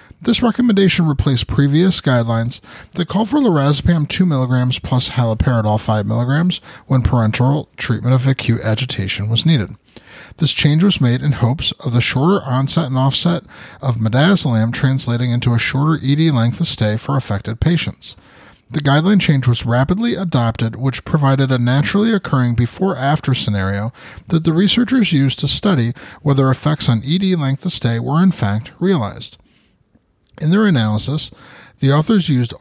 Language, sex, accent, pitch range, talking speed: English, male, American, 120-165 Hz, 150 wpm